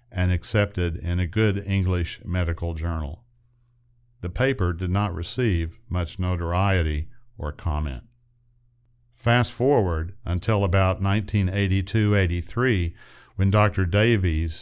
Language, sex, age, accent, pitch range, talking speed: English, male, 50-69, American, 90-120 Hz, 105 wpm